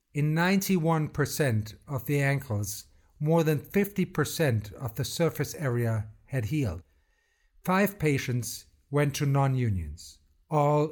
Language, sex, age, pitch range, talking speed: English, male, 60-79, 115-160 Hz, 115 wpm